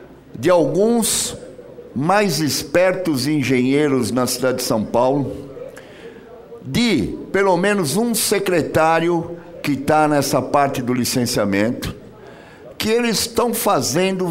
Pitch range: 160-225 Hz